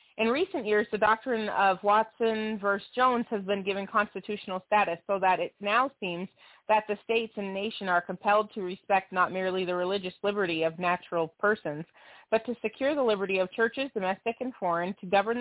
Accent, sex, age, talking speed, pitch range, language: American, female, 30-49, 185 wpm, 185-220 Hz, English